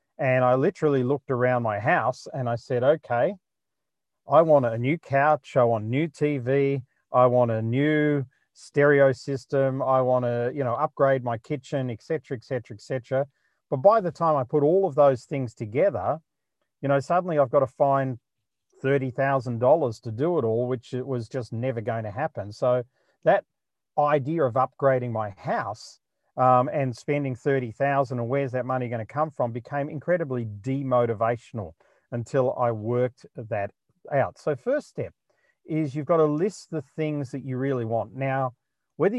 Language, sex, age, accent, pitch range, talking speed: English, male, 40-59, Australian, 120-145 Hz, 175 wpm